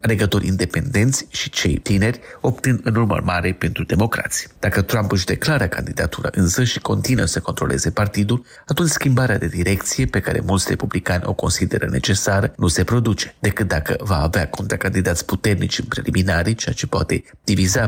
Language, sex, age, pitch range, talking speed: Romanian, male, 30-49, 90-120 Hz, 165 wpm